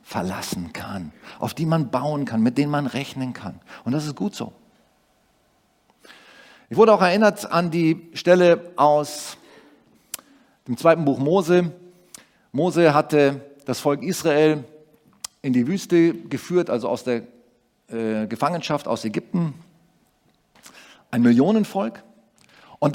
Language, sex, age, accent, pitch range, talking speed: German, male, 40-59, German, 150-220 Hz, 125 wpm